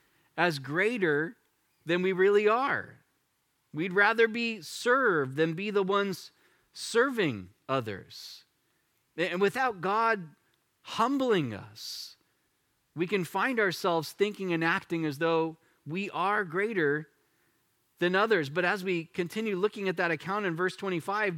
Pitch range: 165-210 Hz